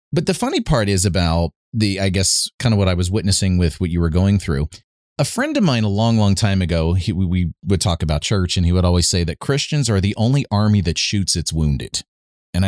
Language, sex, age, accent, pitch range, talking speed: English, male, 30-49, American, 85-110 Hz, 240 wpm